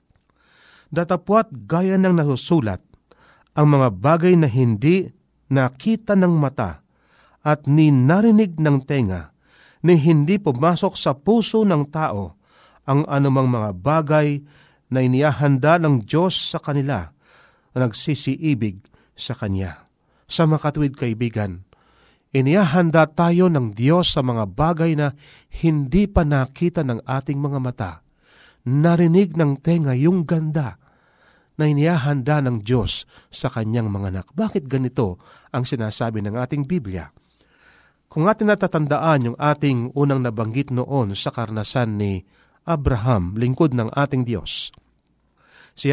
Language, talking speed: Filipino, 120 wpm